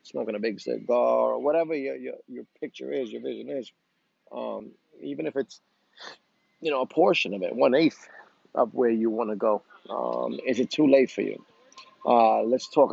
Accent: American